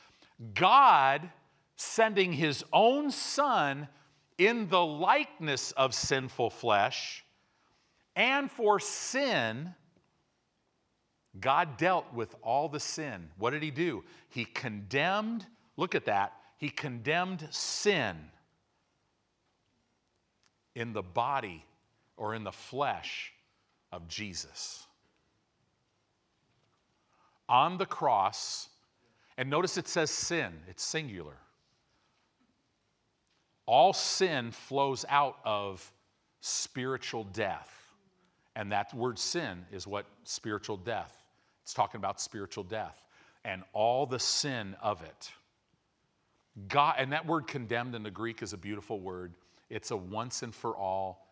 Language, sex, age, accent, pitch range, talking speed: English, male, 50-69, American, 100-155 Hz, 110 wpm